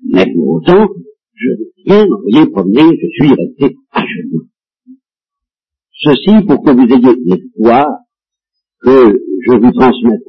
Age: 60-79